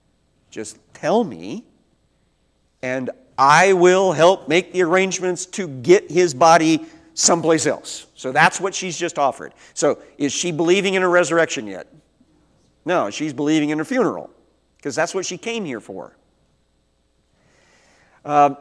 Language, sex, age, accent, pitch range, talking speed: English, male, 50-69, American, 110-165 Hz, 140 wpm